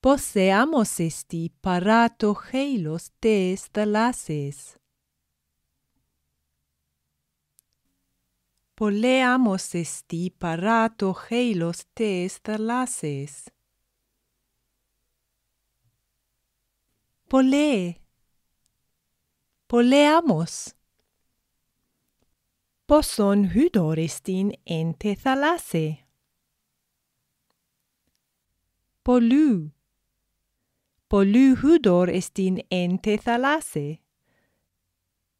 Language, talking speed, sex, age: Greek, 40 wpm, female, 30-49